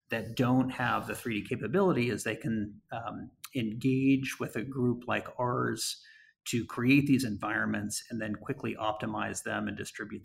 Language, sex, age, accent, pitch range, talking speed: English, male, 30-49, American, 110-125 Hz, 160 wpm